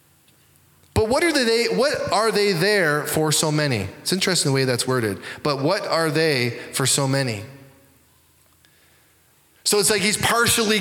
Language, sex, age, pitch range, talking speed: English, male, 20-39, 135-185 Hz, 160 wpm